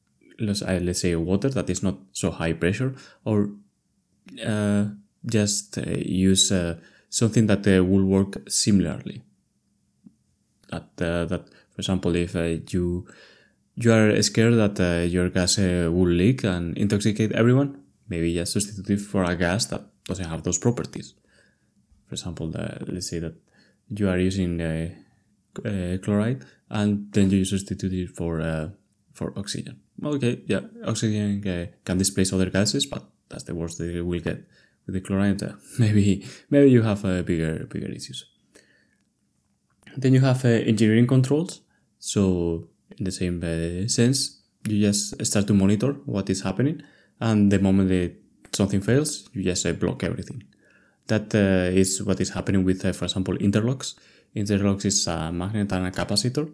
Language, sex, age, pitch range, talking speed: English, male, 20-39, 90-105 Hz, 160 wpm